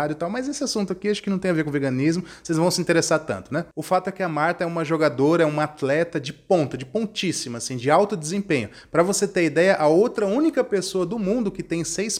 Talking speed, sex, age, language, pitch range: 260 wpm, male, 20-39, English, 145-195 Hz